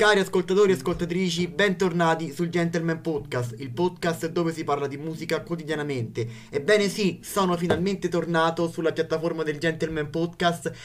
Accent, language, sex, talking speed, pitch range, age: native, Italian, male, 145 wpm, 140-170 Hz, 20-39